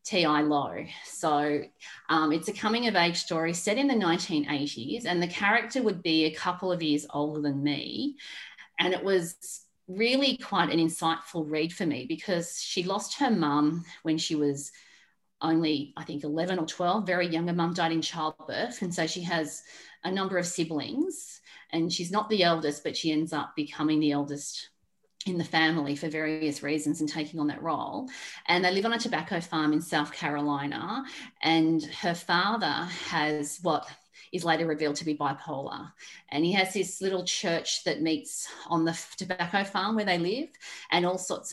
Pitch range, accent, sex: 155-185 Hz, Australian, female